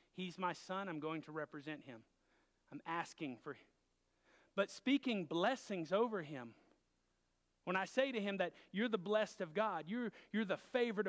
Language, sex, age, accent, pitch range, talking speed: English, male, 40-59, American, 180-235 Hz, 175 wpm